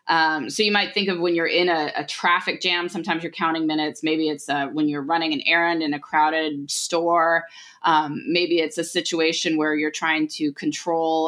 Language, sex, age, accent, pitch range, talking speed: English, female, 20-39, American, 155-205 Hz, 205 wpm